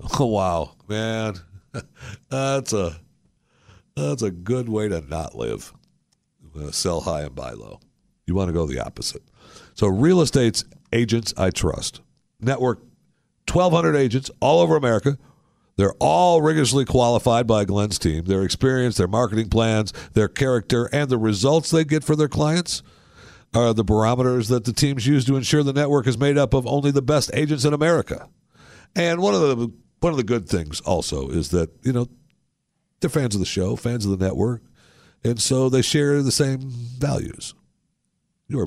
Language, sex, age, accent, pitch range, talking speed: English, male, 60-79, American, 95-140 Hz, 170 wpm